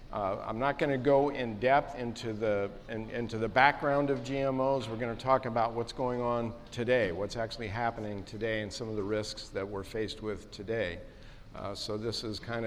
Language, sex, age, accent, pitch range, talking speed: English, male, 50-69, American, 100-115 Hz, 200 wpm